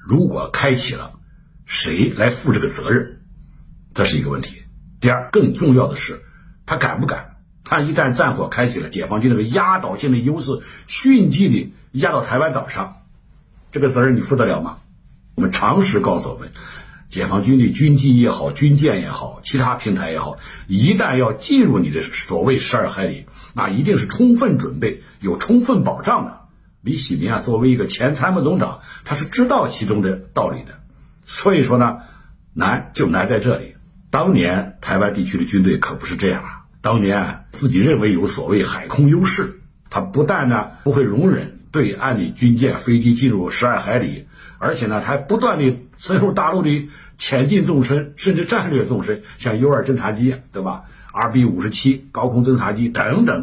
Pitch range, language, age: 120-155 Hz, Chinese, 60-79